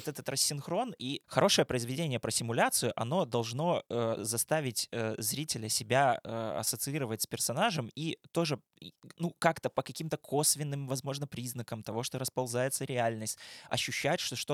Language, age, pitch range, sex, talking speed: Russian, 20-39, 115-145 Hz, male, 140 wpm